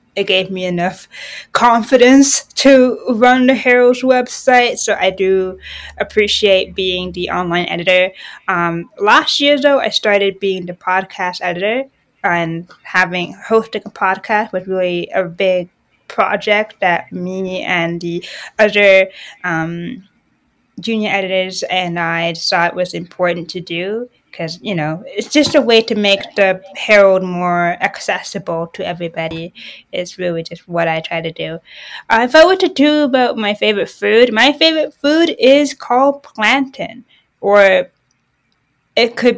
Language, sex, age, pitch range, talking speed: English, female, 20-39, 180-230 Hz, 145 wpm